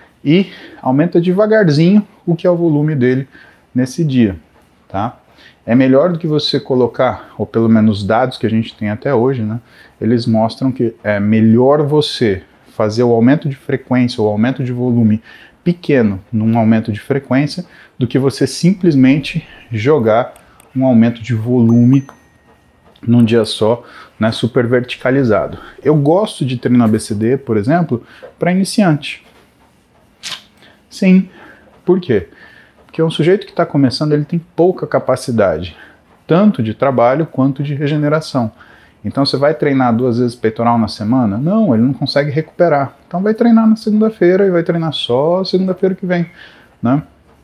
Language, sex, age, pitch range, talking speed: Portuguese, male, 30-49, 115-160 Hz, 150 wpm